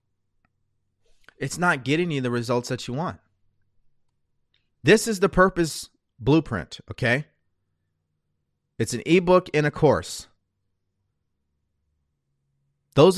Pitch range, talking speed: 95-140 Hz, 100 wpm